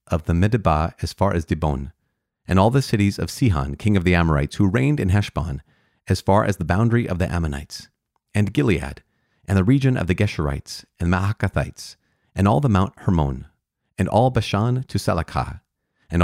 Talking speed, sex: 190 wpm, male